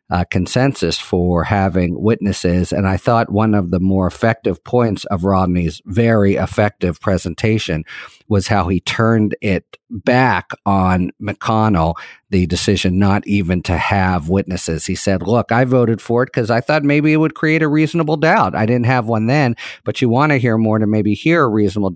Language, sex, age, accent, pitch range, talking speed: English, male, 50-69, American, 90-115 Hz, 185 wpm